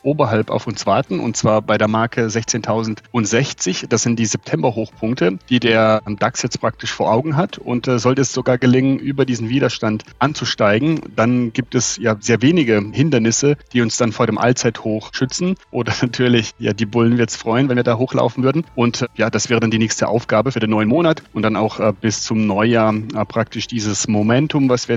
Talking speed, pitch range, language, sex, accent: 205 wpm, 110-125 Hz, German, male, German